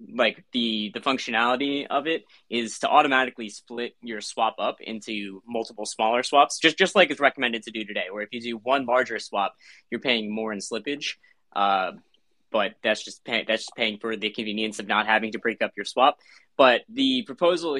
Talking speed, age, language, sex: 200 wpm, 20-39, English, male